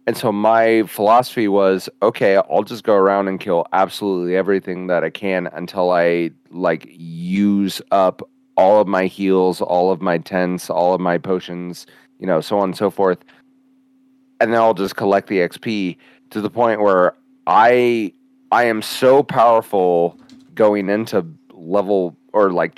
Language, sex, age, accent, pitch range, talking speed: English, male, 30-49, American, 90-145 Hz, 165 wpm